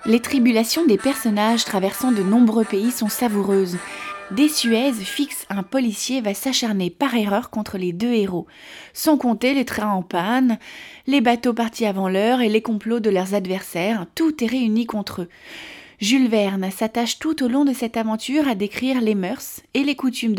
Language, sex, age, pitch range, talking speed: French, female, 20-39, 200-255 Hz, 180 wpm